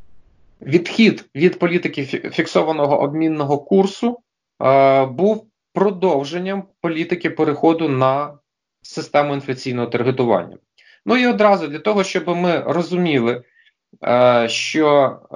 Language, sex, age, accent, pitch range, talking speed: Russian, male, 30-49, native, 135-175 Hz, 100 wpm